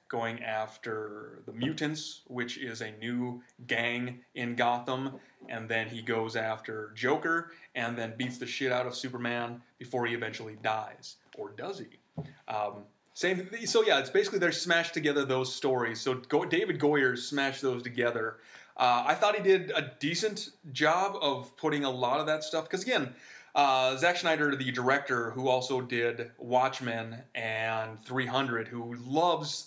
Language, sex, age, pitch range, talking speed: English, male, 30-49, 120-155 Hz, 160 wpm